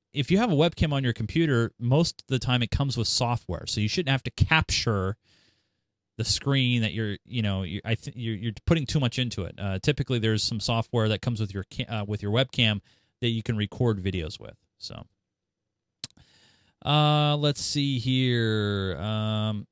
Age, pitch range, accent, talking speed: 30-49, 110-170 Hz, American, 195 wpm